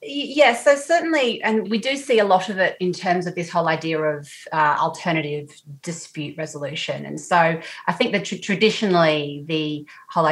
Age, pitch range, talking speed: 30-49, 155-190 Hz, 185 wpm